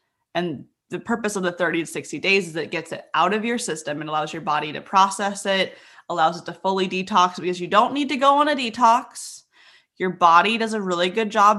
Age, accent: 20-39, American